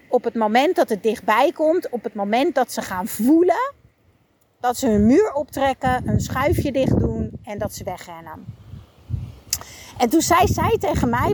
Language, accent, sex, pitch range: Dutch, Dutch, female, 210-285 Hz